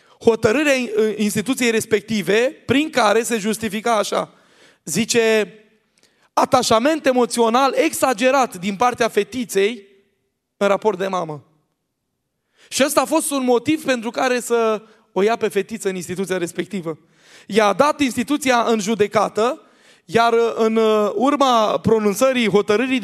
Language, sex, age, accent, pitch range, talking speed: Romanian, male, 20-39, native, 200-245 Hz, 115 wpm